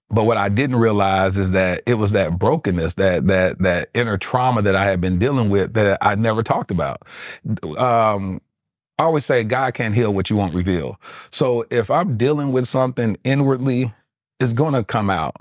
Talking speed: 195 wpm